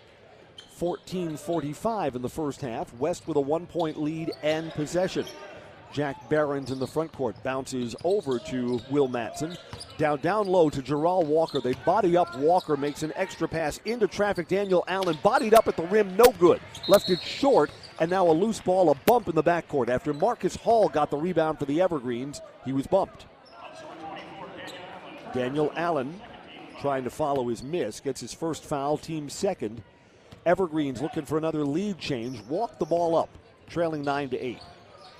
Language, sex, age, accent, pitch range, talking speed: English, male, 50-69, American, 145-180 Hz, 165 wpm